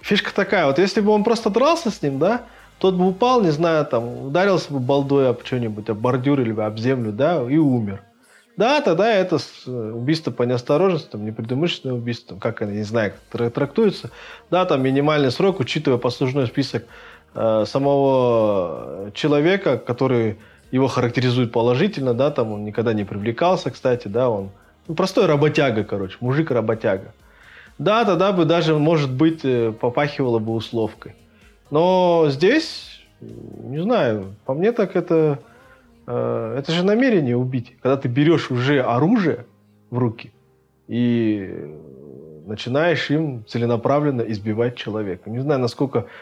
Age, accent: 20-39, native